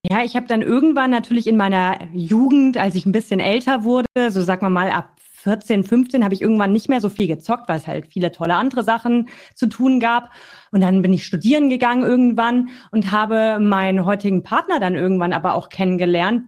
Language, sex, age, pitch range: German, female, 30-49, 180-235 Hz